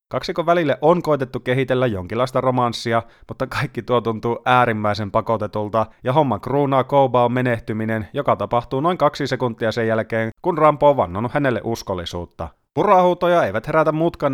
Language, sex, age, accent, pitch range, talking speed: Finnish, male, 30-49, native, 110-140 Hz, 145 wpm